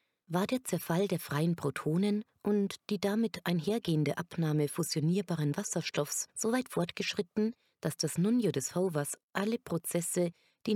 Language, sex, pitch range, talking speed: German, female, 150-195 Hz, 135 wpm